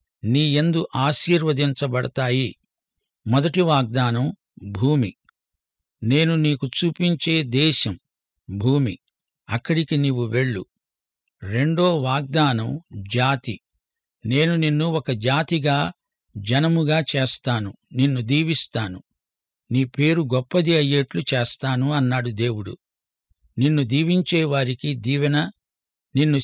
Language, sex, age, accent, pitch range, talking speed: English, male, 60-79, Indian, 130-155 Hz, 85 wpm